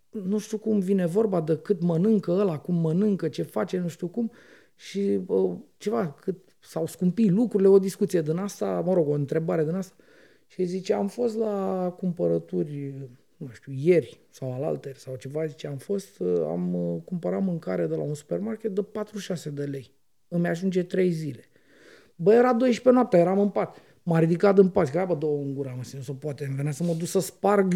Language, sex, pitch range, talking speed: Romanian, male, 155-220 Hz, 190 wpm